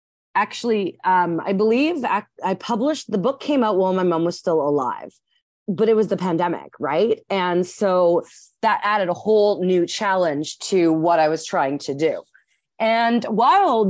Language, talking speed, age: English, 175 wpm, 30-49